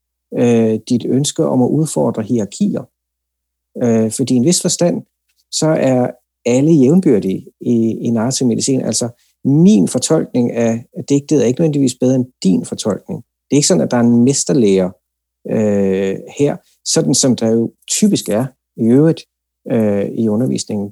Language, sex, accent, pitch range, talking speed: Danish, male, native, 105-145 Hz, 150 wpm